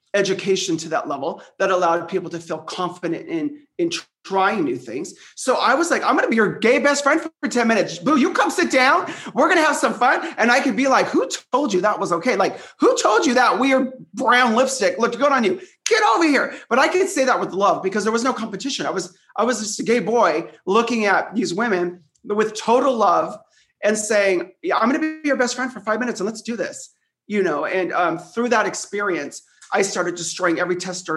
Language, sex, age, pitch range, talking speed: English, male, 30-49, 180-265 Hz, 235 wpm